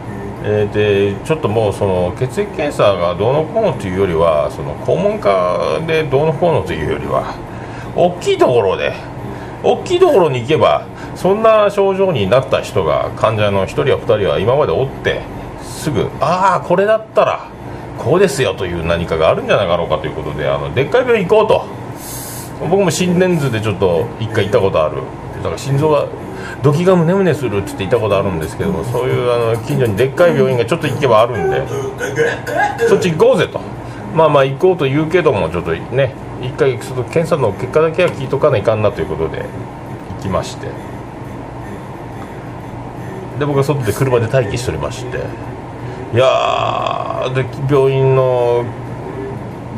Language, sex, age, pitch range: Japanese, male, 40-59, 120-175 Hz